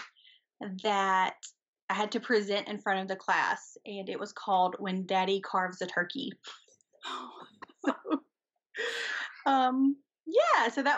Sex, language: female, English